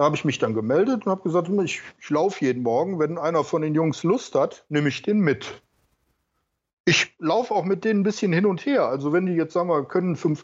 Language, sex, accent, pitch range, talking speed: German, male, German, 130-175 Hz, 240 wpm